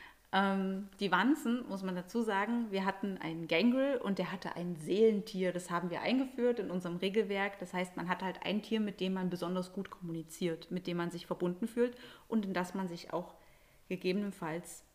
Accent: German